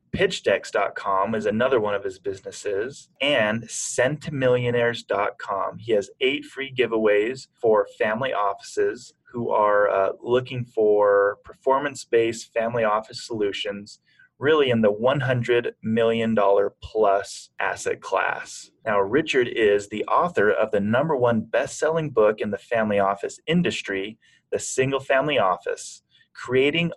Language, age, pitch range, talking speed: English, 30-49, 110-160 Hz, 120 wpm